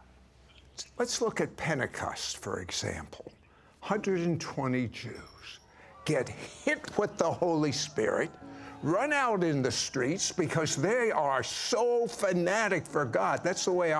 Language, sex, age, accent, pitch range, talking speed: English, male, 60-79, American, 130-180 Hz, 125 wpm